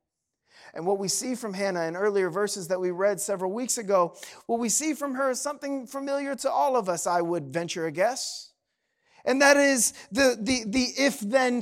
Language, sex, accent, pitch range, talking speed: English, male, American, 200-265 Hz, 205 wpm